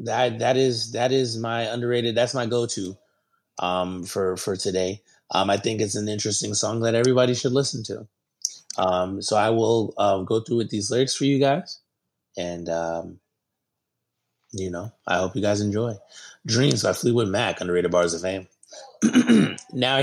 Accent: American